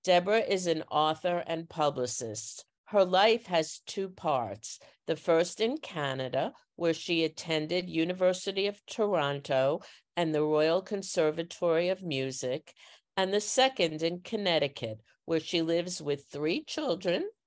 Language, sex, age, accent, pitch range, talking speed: English, female, 50-69, American, 150-180 Hz, 130 wpm